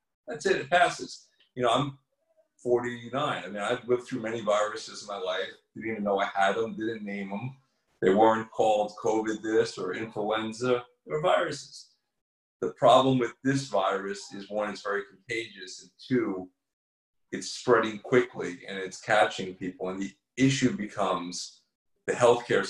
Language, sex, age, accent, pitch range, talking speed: English, male, 30-49, American, 95-120 Hz, 165 wpm